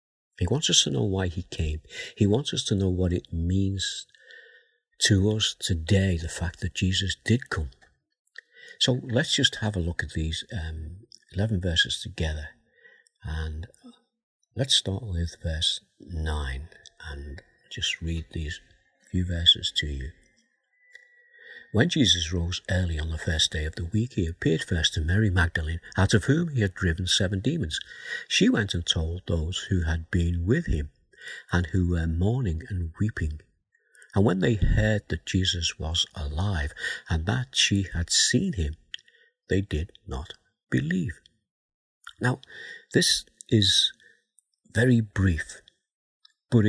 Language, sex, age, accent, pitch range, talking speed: English, male, 50-69, British, 85-110 Hz, 150 wpm